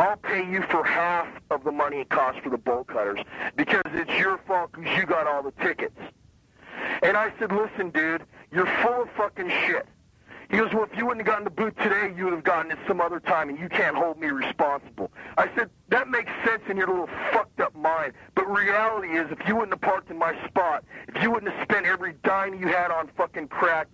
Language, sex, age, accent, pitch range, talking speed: English, male, 40-59, American, 175-220 Hz, 235 wpm